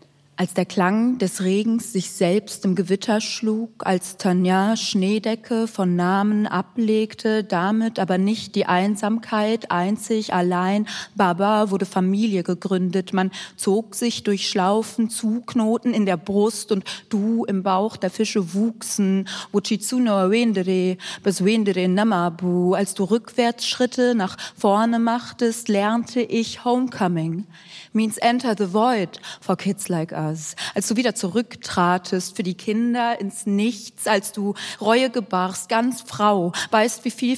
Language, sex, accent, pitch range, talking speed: German, female, German, 190-225 Hz, 125 wpm